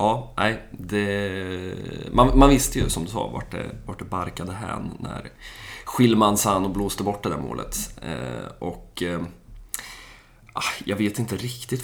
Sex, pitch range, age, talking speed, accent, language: male, 90-115 Hz, 20-39, 155 wpm, native, Swedish